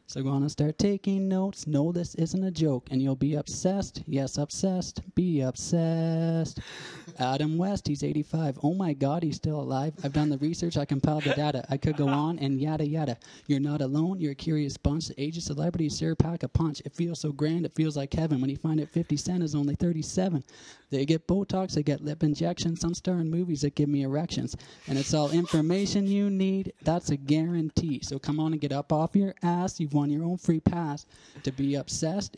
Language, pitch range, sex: English, 145-170 Hz, male